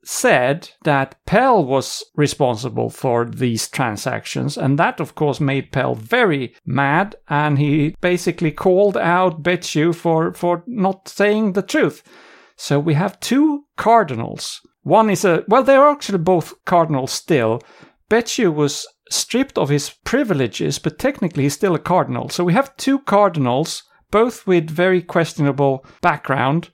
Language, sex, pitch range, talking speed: English, male, 145-210 Hz, 145 wpm